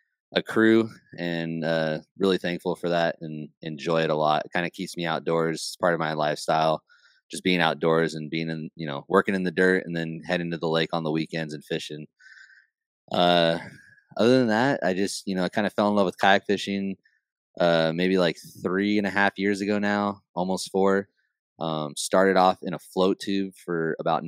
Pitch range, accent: 80-95 Hz, American